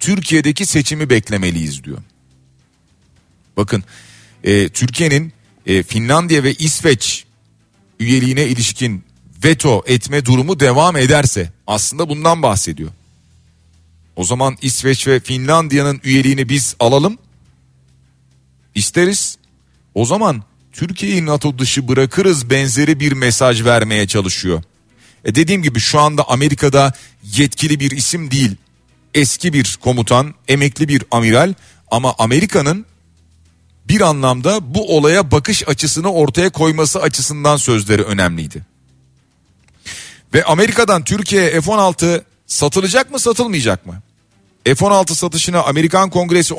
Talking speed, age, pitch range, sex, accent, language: 100 wpm, 40-59, 95-155 Hz, male, native, Turkish